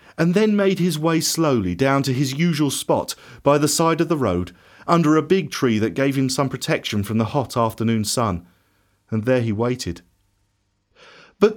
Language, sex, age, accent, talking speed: English, male, 40-59, British, 185 wpm